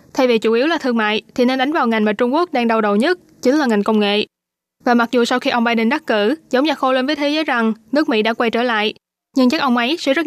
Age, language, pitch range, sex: 20-39, Vietnamese, 225-275 Hz, female